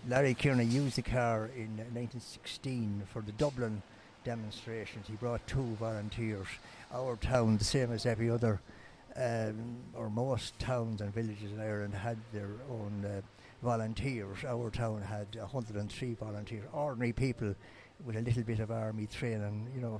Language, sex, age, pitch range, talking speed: English, male, 60-79, 105-120 Hz, 155 wpm